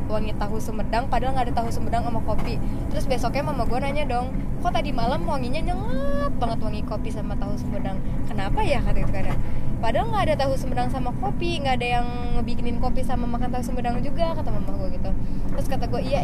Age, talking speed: 20-39, 210 wpm